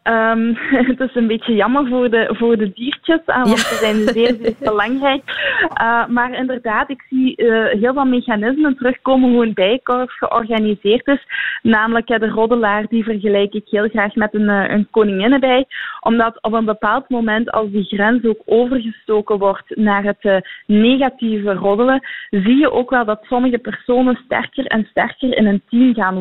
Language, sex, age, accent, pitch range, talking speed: Dutch, female, 20-39, Dutch, 215-255 Hz, 165 wpm